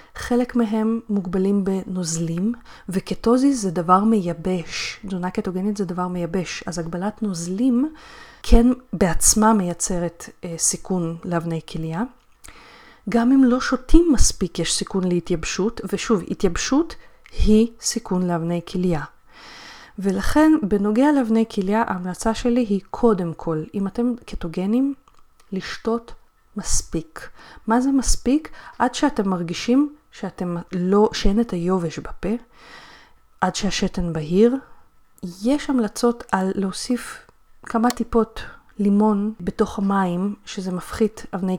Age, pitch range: 30-49, 180-230 Hz